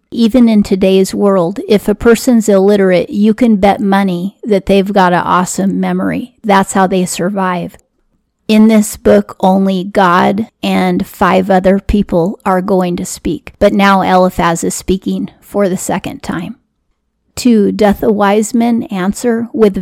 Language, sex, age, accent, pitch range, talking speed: English, female, 40-59, American, 185-215 Hz, 155 wpm